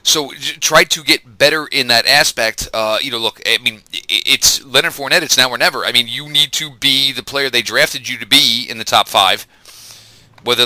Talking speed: 220 wpm